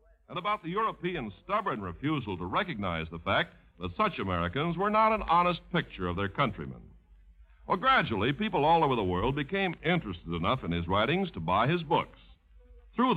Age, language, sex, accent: 60-79, English, male, American